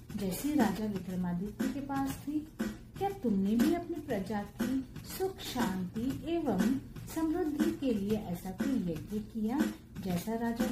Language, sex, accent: Hindi, female, native